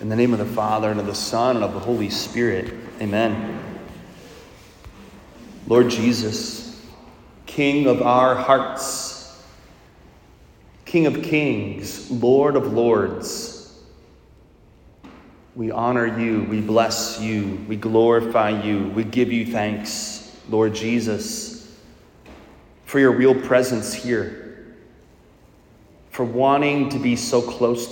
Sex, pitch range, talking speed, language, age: male, 105-130 Hz, 115 wpm, English, 30-49